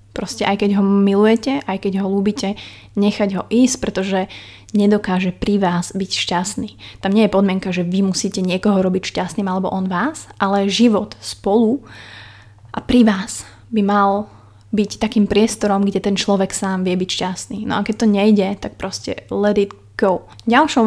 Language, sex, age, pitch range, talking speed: Slovak, female, 20-39, 190-215 Hz, 175 wpm